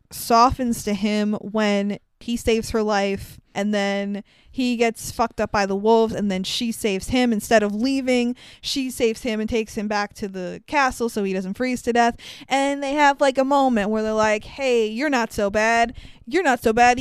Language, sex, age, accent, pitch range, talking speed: English, female, 20-39, American, 215-265 Hz, 210 wpm